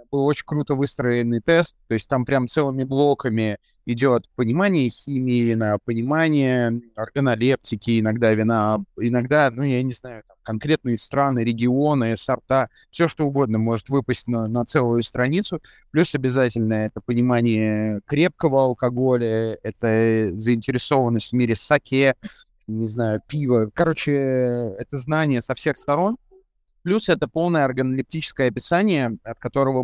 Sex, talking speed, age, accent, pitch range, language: male, 135 wpm, 30-49, native, 115-145 Hz, Russian